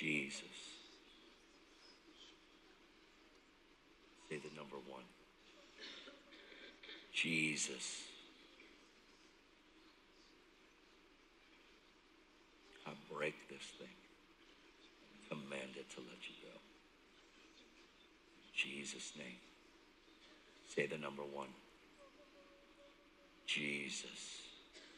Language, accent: English, American